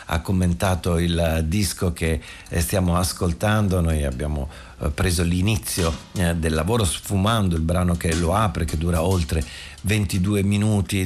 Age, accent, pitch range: 50-69, native, 80-95 Hz